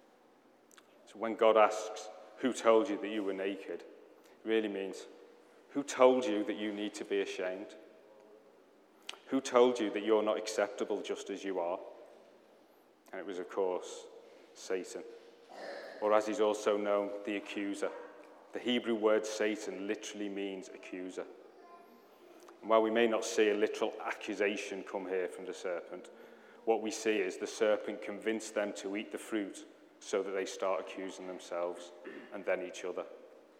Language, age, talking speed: English, 30-49, 160 wpm